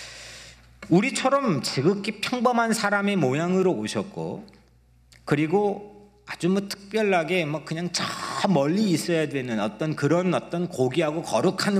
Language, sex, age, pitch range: Korean, male, 40-59, 125-200 Hz